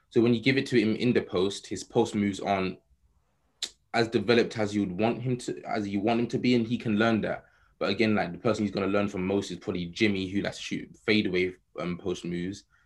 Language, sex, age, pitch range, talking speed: English, male, 20-39, 95-110 Hz, 250 wpm